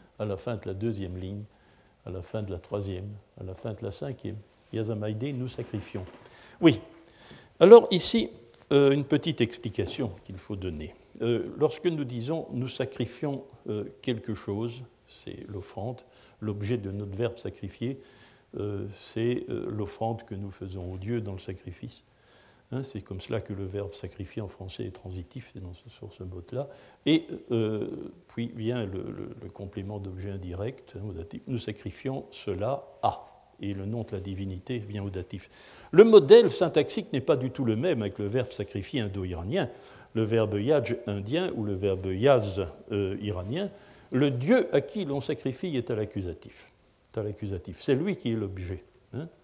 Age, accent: 60-79, French